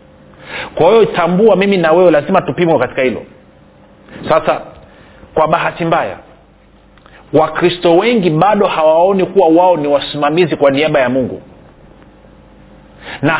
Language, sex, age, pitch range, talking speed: Swahili, male, 40-59, 150-190 Hz, 120 wpm